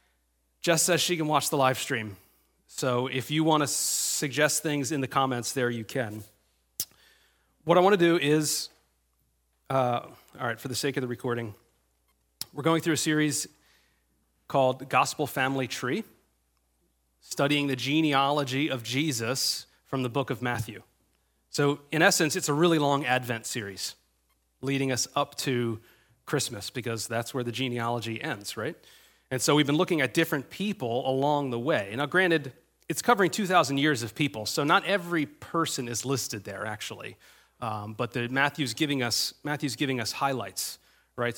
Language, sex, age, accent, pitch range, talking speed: English, male, 30-49, American, 115-145 Hz, 165 wpm